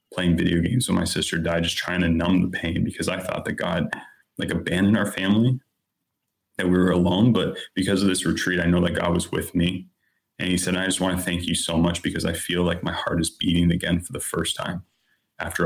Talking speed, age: 240 wpm, 20-39